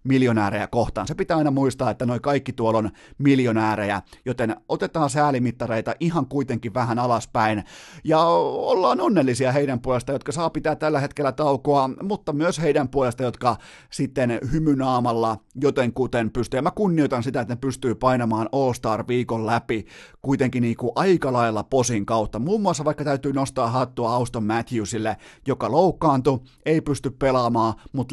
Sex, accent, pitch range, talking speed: male, native, 115-140 Hz, 155 wpm